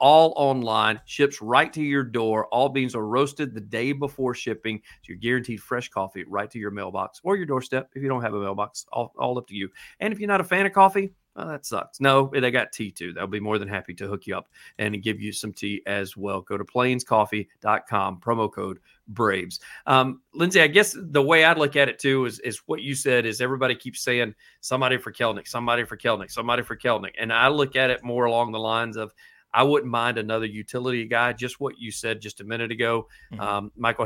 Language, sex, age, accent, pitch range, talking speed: English, male, 40-59, American, 110-135 Hz, 230 wpm